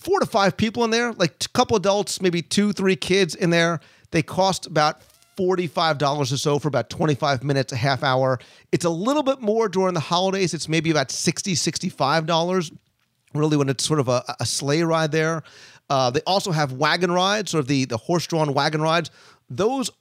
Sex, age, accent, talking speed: male, 40-59, American, 200 wpm